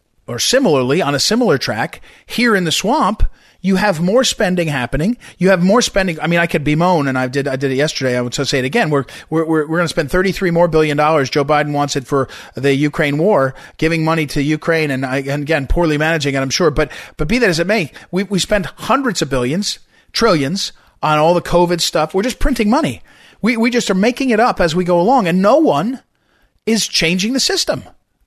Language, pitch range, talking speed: English, 150-205 Hz, 230 wpm